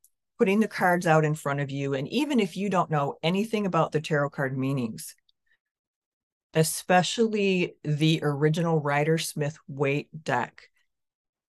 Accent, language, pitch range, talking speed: American, English, 150-185 Hz, 140 wpm